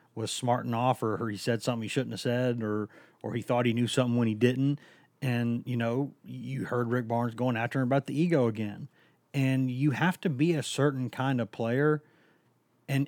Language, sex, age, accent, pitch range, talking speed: English, male, 30-49, American, 120-140 Hz, 210 wpm